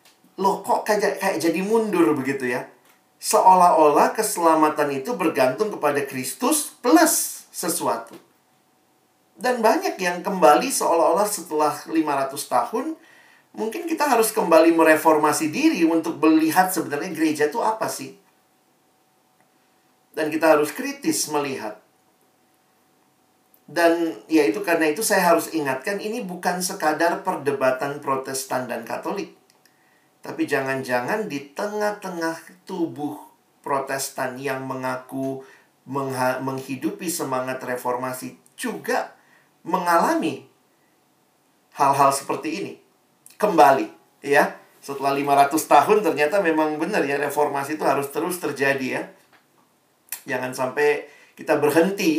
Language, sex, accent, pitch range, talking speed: Indonesian, male, native, 140-200 Hz, 105 wpm